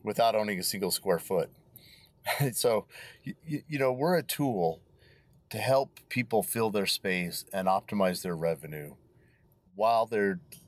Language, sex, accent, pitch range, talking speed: English, male, American, 95-125 Hz, 140 wpm